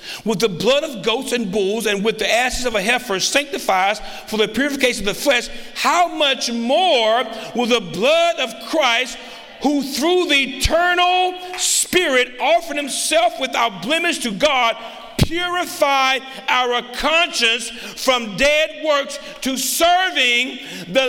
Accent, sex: American, male